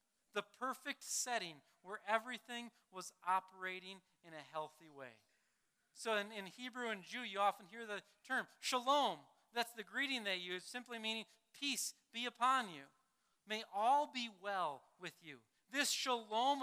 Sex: male